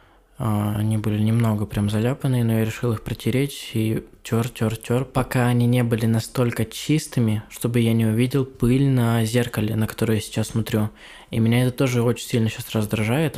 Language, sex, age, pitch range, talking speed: Russian, male, 20-39, 110-130 Hz, 180 wpm